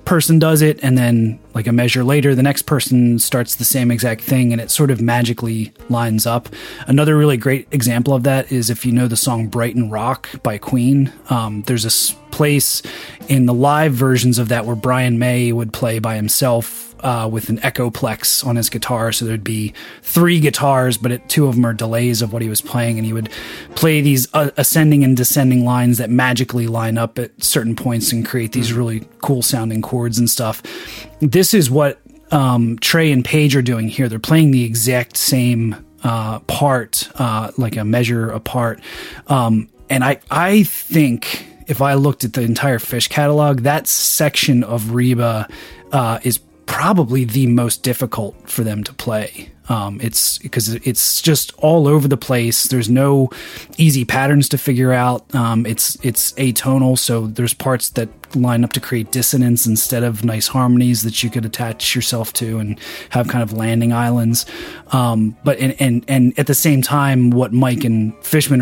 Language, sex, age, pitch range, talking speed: English, male, 30-49, 115-135 Hz, 185 wpm